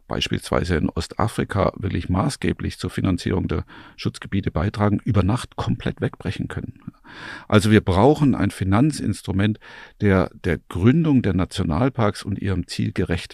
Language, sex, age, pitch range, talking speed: German, male, 50-69, 95-115 Hz, 130 wpm